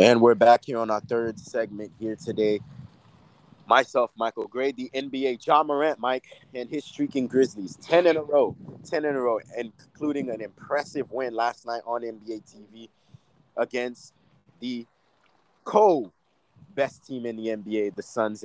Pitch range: 115-140 Hz